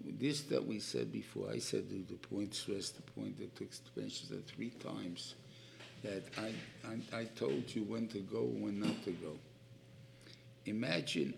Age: 60-79